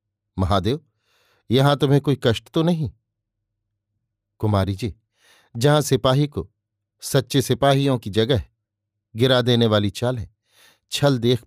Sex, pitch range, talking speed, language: male, 105-135 Hz, 120 wpm, Hindi